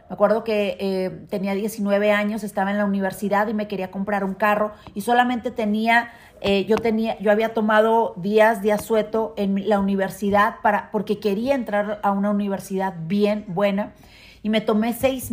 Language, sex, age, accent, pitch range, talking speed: Spanish, female, 40-59, Mexican, 205-250 Hz, 175 wpm